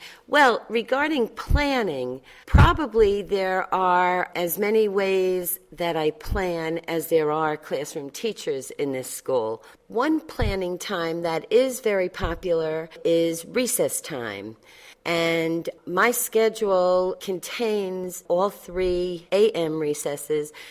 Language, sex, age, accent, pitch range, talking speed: English, female, 40-59, American, 160-205 Hz, 110 wpm